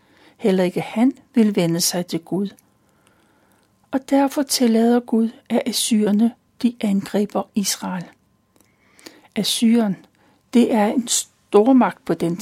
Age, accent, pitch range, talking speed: 60-79, native, 205-245 Hz, 110 wpm